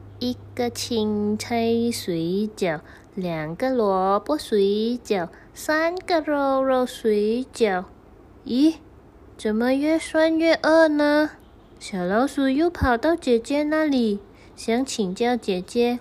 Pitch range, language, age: 215-290 Hz, Chinese, 20-39